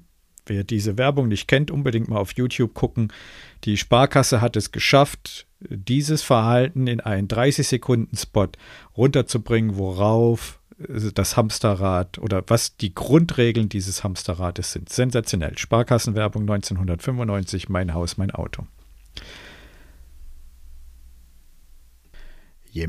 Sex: male